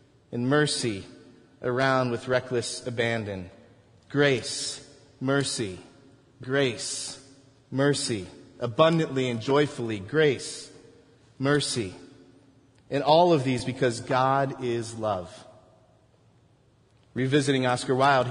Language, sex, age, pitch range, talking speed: English, male, 30-49, 115-140 Hz, 85 wpm